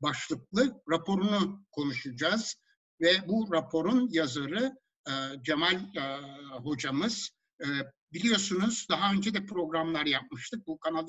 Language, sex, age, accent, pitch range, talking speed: Turkish, male, 60-79, native, 155-220 Hz, 110 wpm